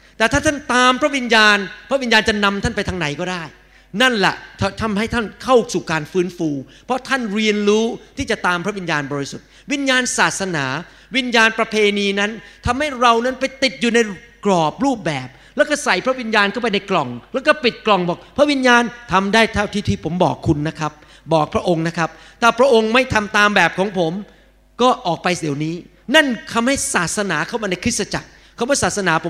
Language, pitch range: Thai, 175-235 Hz